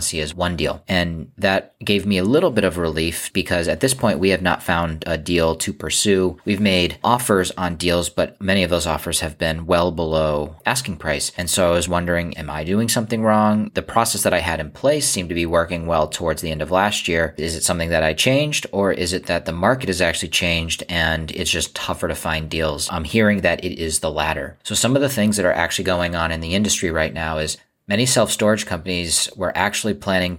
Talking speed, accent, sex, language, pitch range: 235 wpm, American, male, English, 80-95 Hz